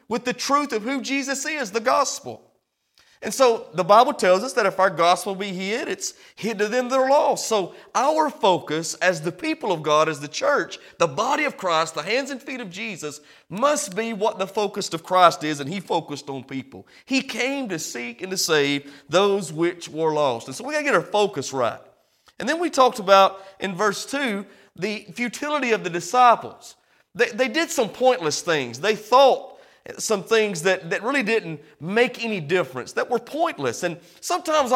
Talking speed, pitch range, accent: 200 wpm, 180-260 Hz, American